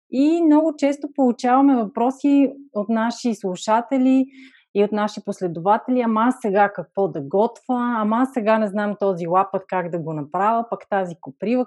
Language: Bulgarian